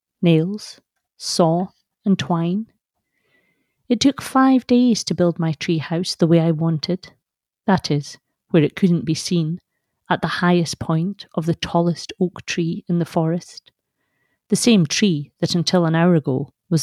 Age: 40-59